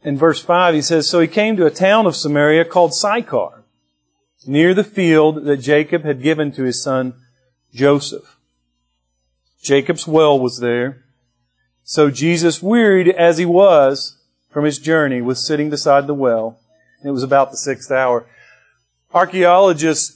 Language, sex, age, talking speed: English, male, 40-59, 150 wpm